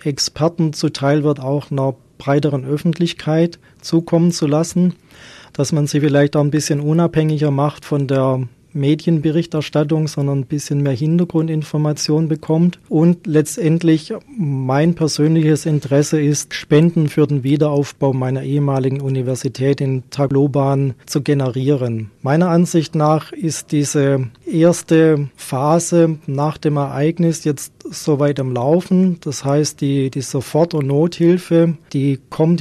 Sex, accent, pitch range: male, German, 140-160 Hz